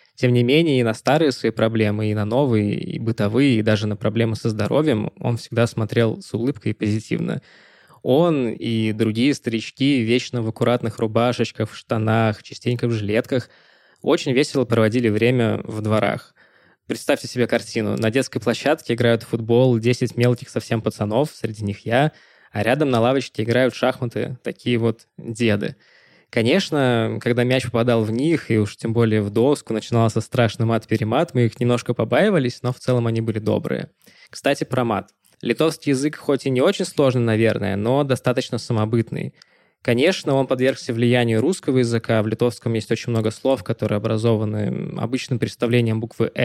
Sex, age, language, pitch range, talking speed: male, 20-39, Russian, 110-130 Hz, 160 wpm